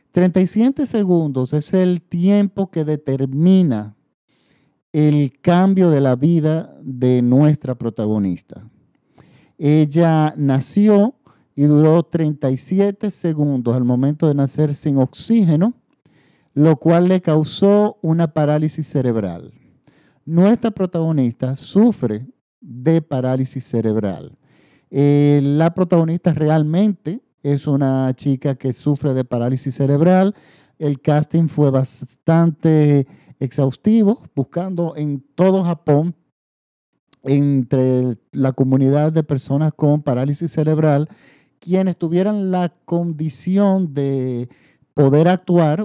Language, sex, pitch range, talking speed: Spanish, male, 135-170 Hz, 100 wpm